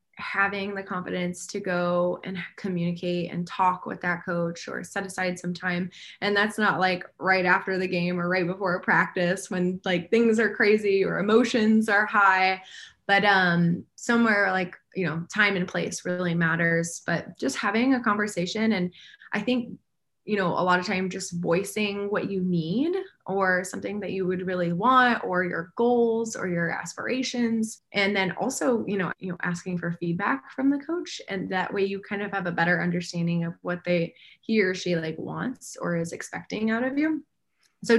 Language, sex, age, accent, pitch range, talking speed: English, female, 20-39, American, 180-220 Hz, 190 wpm